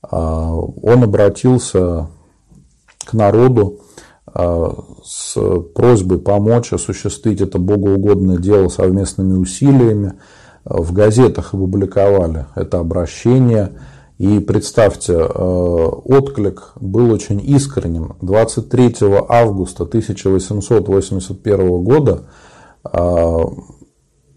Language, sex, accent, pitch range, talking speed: Russian, male, native, 90-110 Hz, 70 wpm